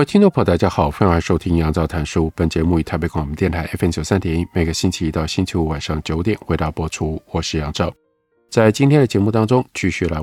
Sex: male